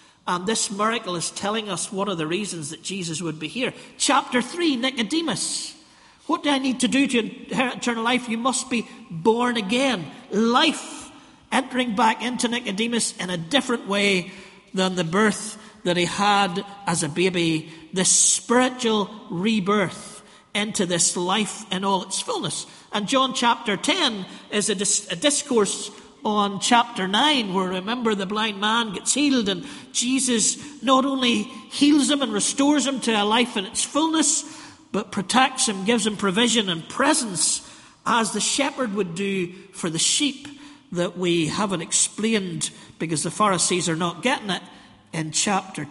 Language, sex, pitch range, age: English, male, 195-255 Hz, 50-69